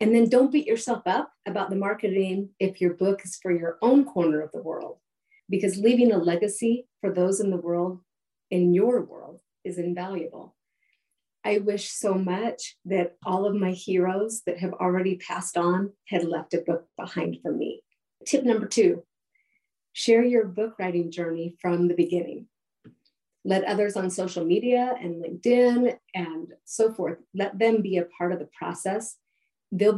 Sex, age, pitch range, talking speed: female, 40-59, 175-215 Hz, 170 wpm